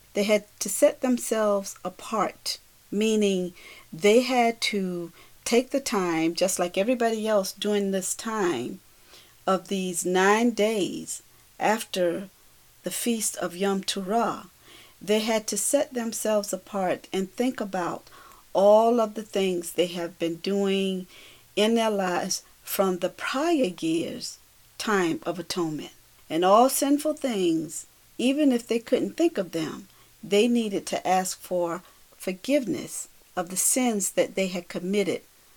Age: 40-59